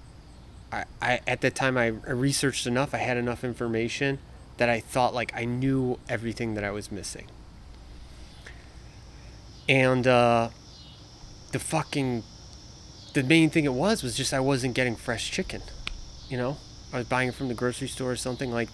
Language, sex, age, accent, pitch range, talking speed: Ukrainian, male, 20-39, American, 115-140 Hz, 165 wpm